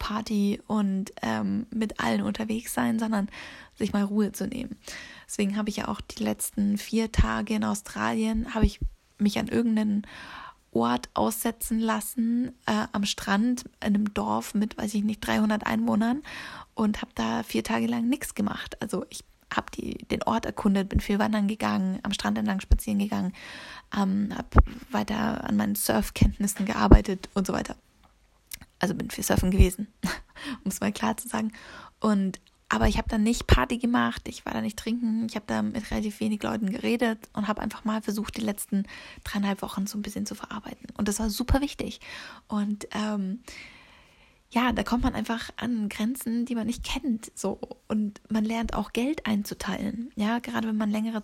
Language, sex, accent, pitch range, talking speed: German, female, German, 205-230 Hz, 180 wpm